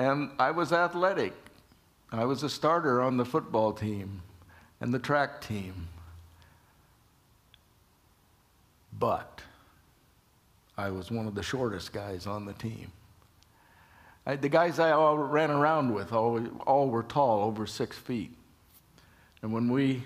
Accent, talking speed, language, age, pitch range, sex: American, 130 wpm, English, 60-79, 100-135 Hz, male